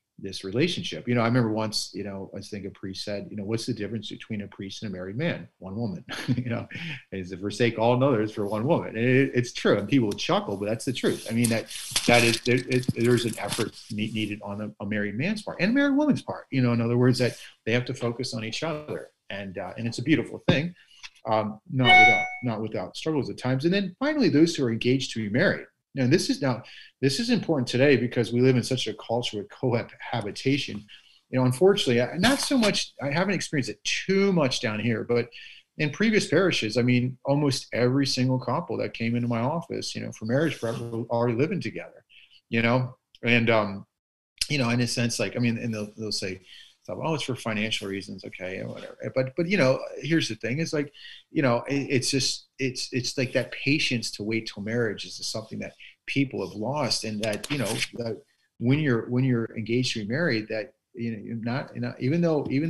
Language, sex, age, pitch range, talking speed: English, male, 40-59, 110-135 Hz, 230 wpm